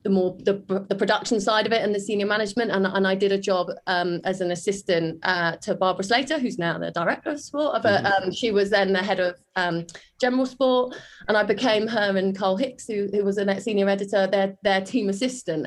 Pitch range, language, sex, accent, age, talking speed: 180-215 Hz, English, female, British, 30-49, 230 wpm